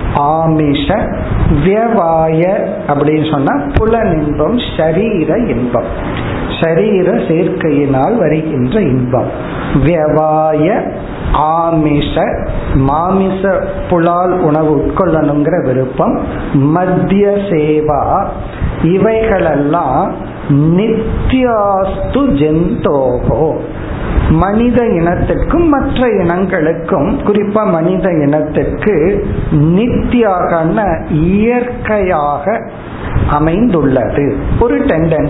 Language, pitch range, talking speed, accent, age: Tamil, 150-195 Hz, 50 wpm, native, 50-69